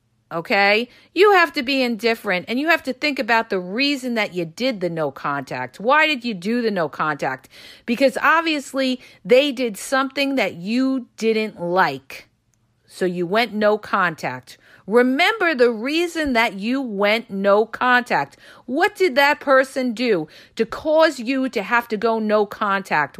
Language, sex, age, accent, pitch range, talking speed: English, female, 40-59, American, 205-265 Hz, 165 wpm